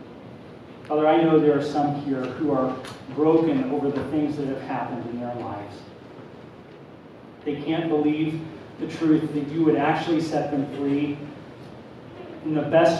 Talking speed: 155 wpm